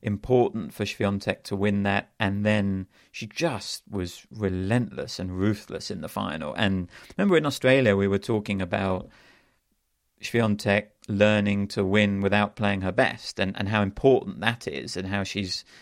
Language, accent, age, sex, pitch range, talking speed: English, British, 40-59, male, 100-115 Hz, 160 wpm